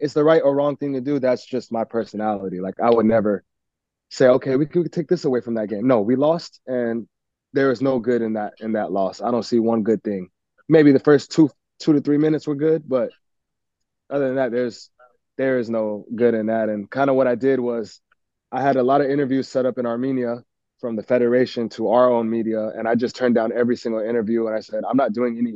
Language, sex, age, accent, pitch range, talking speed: English, male, 20-39, American, 110-130 Hz, 245 wpm